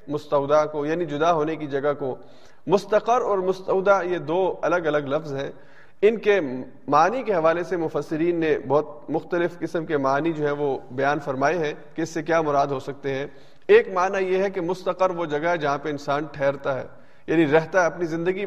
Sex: male